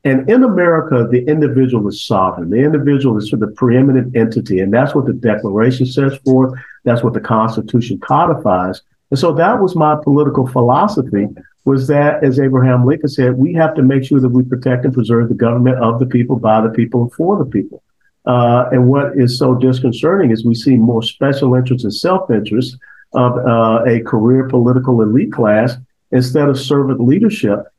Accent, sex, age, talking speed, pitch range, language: American, male, 50-69, 185 wpm, 115-135 Hz, English